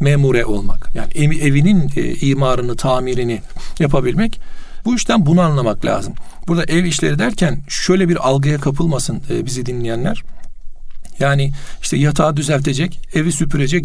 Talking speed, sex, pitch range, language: 130 wpm, male, 140-175 Hz, Turkish